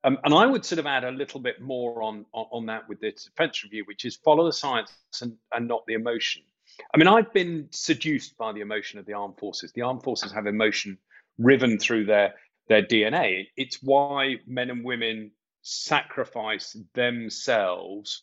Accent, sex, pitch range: British, male, 110-145 Hz